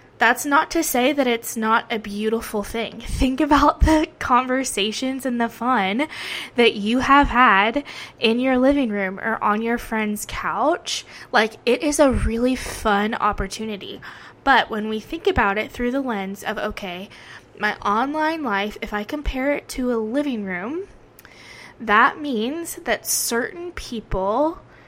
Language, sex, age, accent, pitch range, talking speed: English, female, 10-29, American, 215-275 Hz, 155 wpm